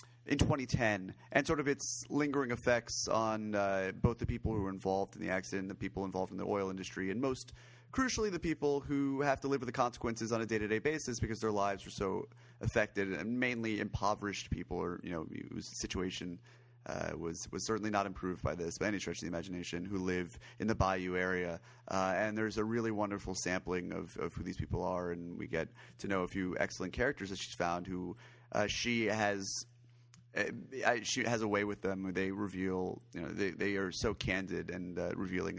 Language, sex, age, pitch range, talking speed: English, male, 30-49, 95-120 Hz, 210 wpm